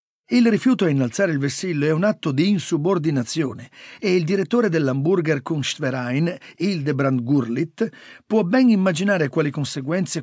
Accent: native